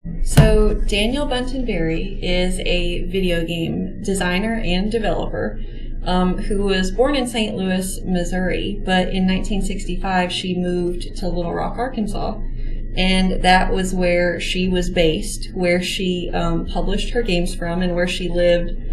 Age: 30-49